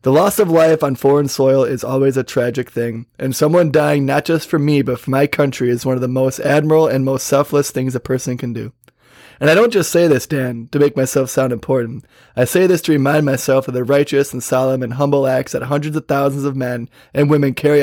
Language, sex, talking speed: English, male, 240 wpm